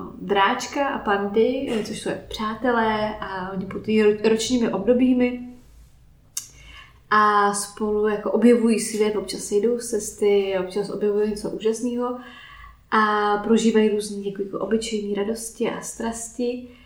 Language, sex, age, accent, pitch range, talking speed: Czech, female, 20-39, native, 205-225 Hz, 105 wpm